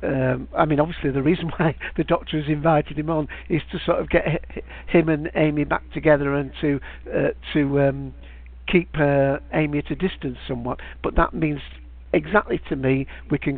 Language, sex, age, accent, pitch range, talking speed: English, male, 60-79, British, 140-160 Hz, 195 wpm